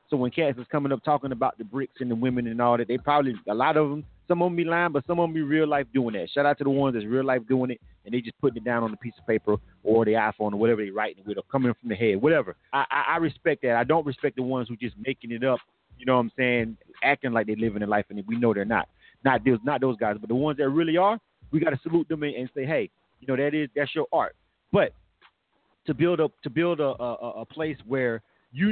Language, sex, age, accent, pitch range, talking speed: English, male, 30-49, American, 125-165 Hz, 290 wpm